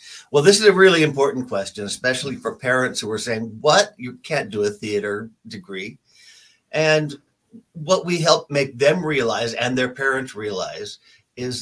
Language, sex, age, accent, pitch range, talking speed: English, male, 60-79, American, 110-140 Hz, 165 wpm